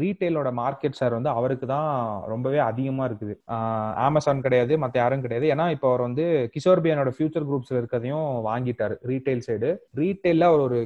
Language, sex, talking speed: Tamil, male, 115 wpm